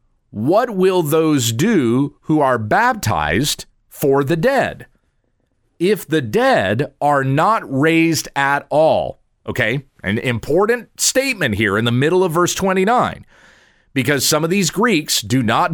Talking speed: 140 wpm